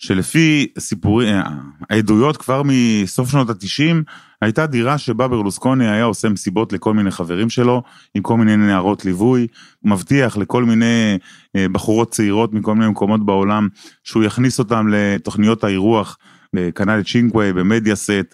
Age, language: 30-49, Hebrew